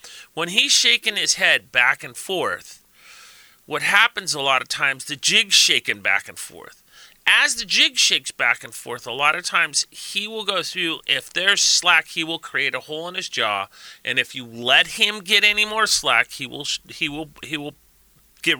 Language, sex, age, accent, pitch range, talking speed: English, male, 30-49, American, 135-185 Hz, 190 wpm